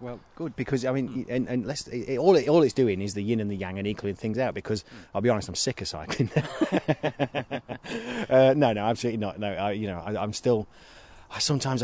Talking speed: 240 wpm